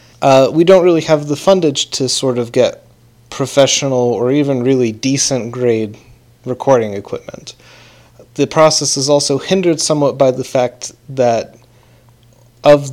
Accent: American